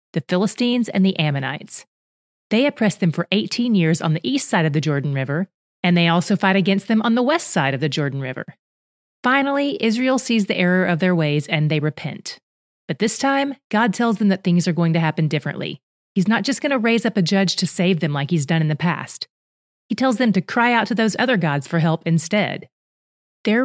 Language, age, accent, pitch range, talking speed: English, 30-49, American, 165-225 Hz, 225 wpm